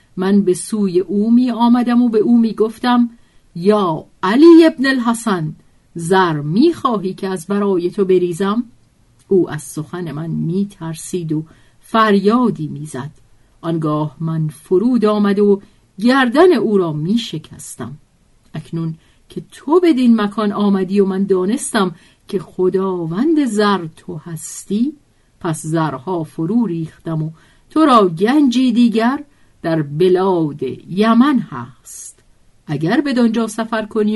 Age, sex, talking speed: 50-69, female, 135 wpm